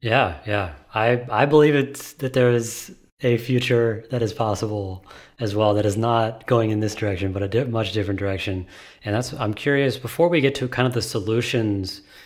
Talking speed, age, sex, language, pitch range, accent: 200 wpm, 30-49, male, English, 105-125 Hz, American